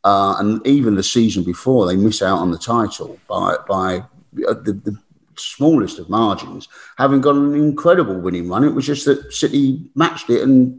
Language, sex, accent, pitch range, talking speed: English, male, British, 105-155 Hz, 185 wpm